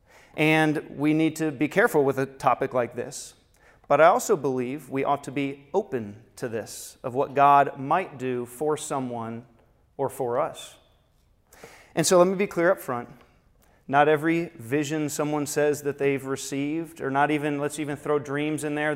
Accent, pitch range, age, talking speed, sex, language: American, 130-160 Hz, 30-49, 180 wpm, male, English